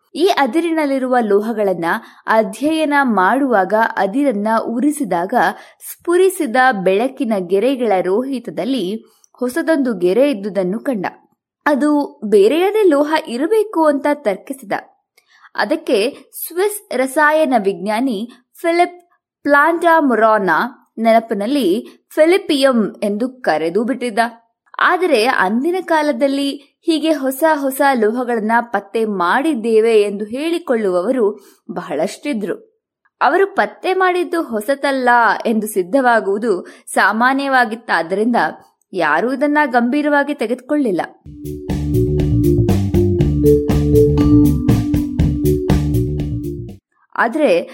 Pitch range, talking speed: 210-310 Hz, 70 wpm